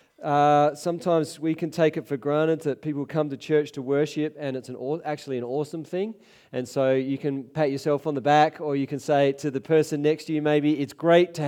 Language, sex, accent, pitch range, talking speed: English, male, Australian, 130-160 Hz, 240 wpm